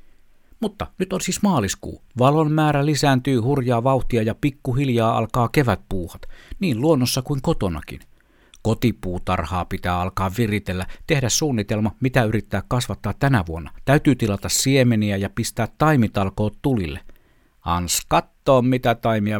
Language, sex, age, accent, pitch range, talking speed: Finnish, male, 60-79, native, 95-130 Hz, 125 wpm